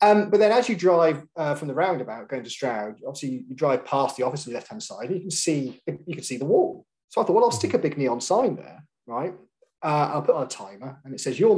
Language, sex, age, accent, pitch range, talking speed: English, male, 30-49, British, 125-175 Hz, 280 wpm